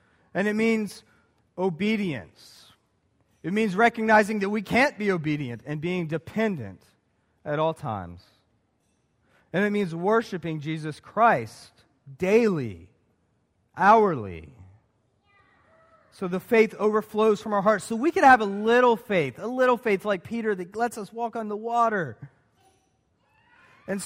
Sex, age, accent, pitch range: male, 40-59, American, 155-225 Hz